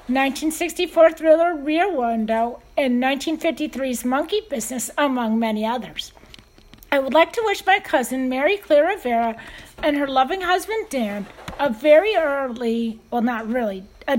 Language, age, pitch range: English, 40-59, 245-315 Hz